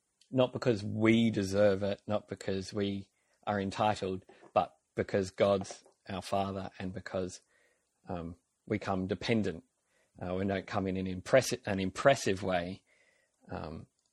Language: English